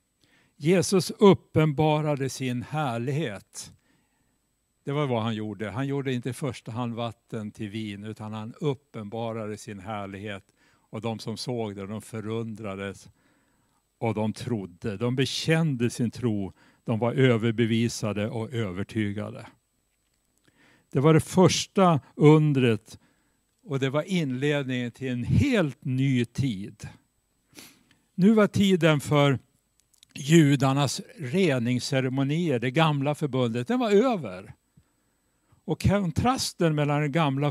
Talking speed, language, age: 115 wpm, Swedish, 60-79